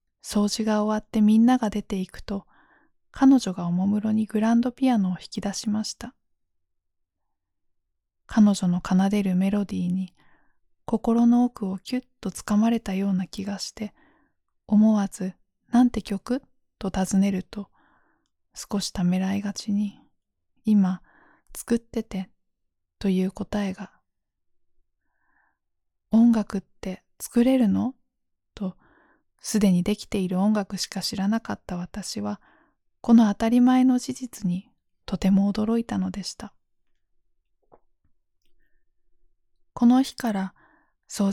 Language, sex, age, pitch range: Japanese, female, 20-39, 180-220 Hz